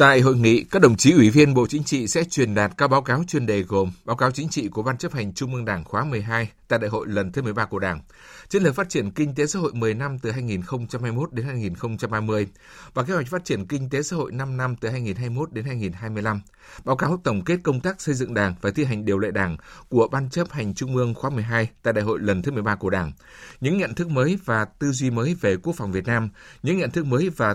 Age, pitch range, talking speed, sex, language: 60-79, 110-145 Hz, 260 wpm, male, Vietnamese